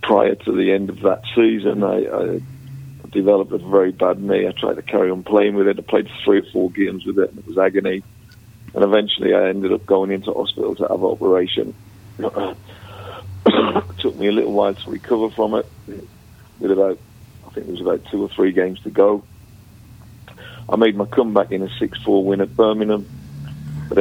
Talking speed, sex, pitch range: 200 wpm, male, 95-105 Hz